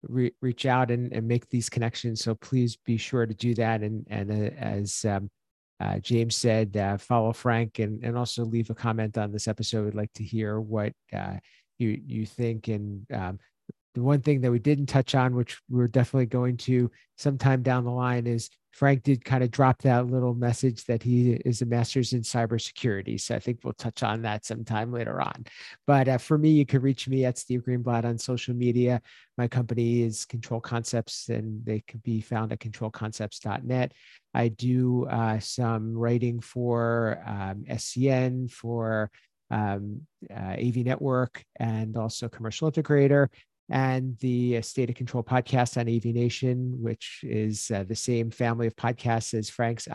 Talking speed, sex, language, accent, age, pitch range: 180 wpm, male, English, American, 50-69, 110-125 Hz